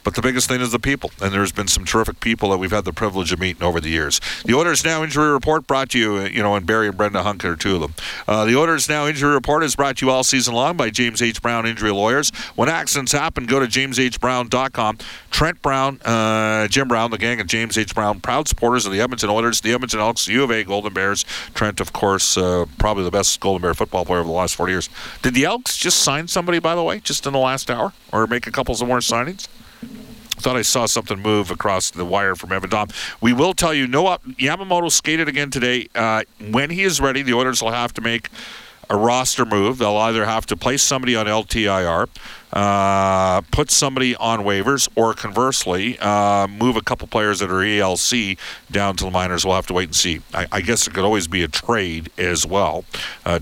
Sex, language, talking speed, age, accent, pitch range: male, English, 235 wpm, 50-69, American, 100-130 Hz